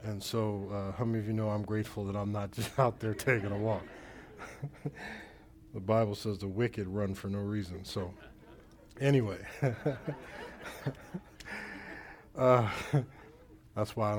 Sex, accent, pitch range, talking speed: male, American, 100-115 Hz, 145 wpm